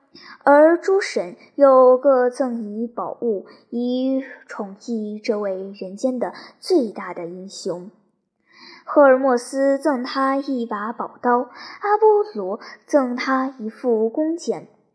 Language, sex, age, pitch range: Chinese, male, 10-29, 225-290 Hz